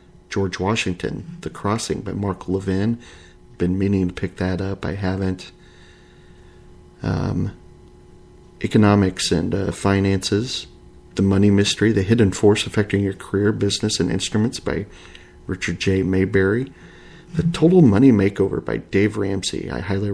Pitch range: 95-110 Hz